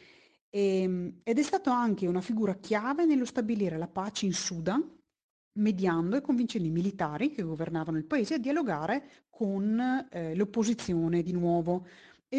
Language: Italian